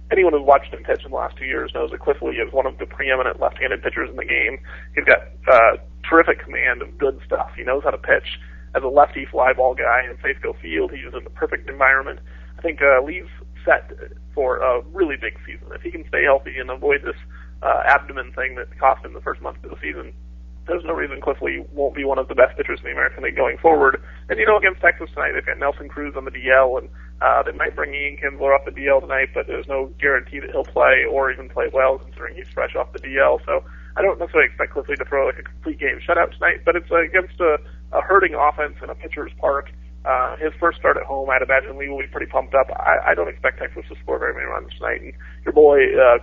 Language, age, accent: English, 30-49, American